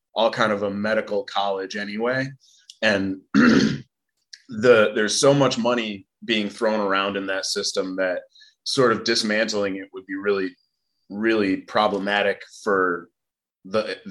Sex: male